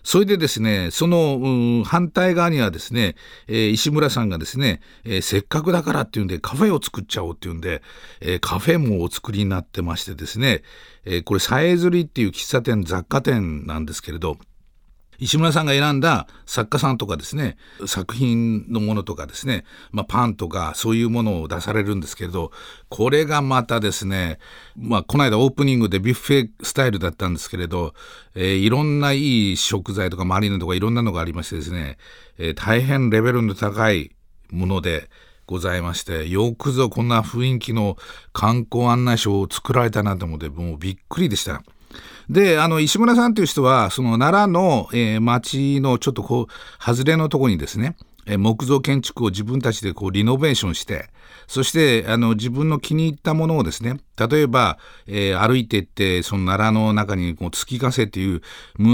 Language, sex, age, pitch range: Japanese, male, 50-69, 95-140 Hz